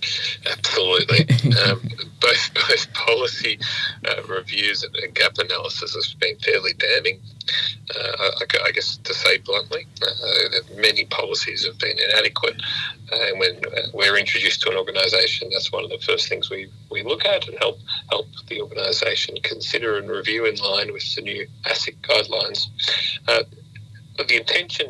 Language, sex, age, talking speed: English, male, 40-59, 150 wpm